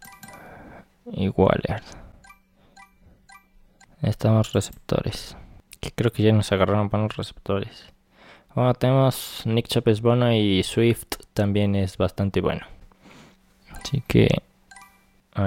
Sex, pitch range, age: male, 95-115 Hz, 20-39